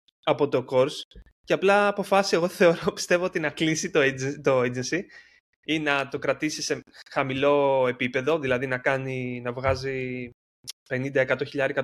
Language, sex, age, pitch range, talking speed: Greek, male, 20-39, 125-165 Hz, 150 wpm